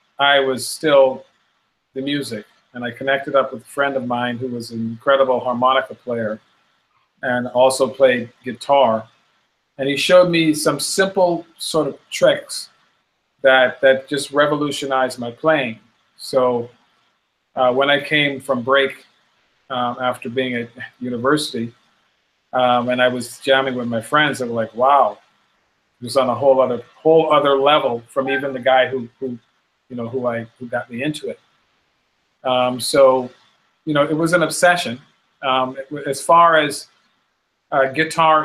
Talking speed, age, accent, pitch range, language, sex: 160 wpm, 40-59, American, 125-140 Hz, English, male